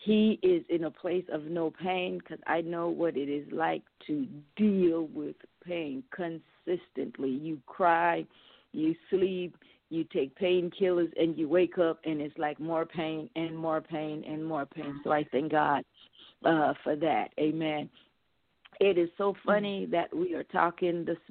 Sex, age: female, 40-59